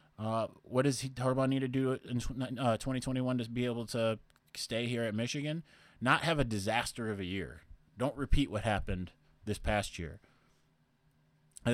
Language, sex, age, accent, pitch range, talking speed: English, male, 20-39, American, 100-130 Hz, 175 wpm